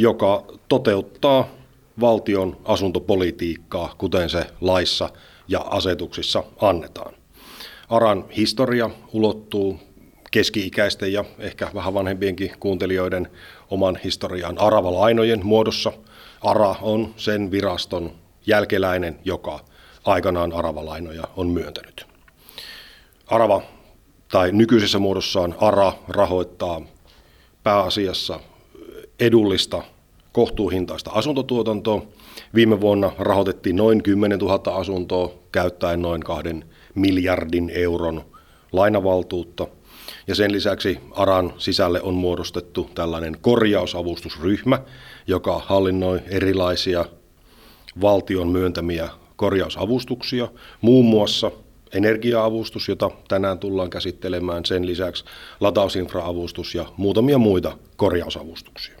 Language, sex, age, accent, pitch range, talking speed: Finnish, male, 40-59, native, 85-105 Hz, 85 wpm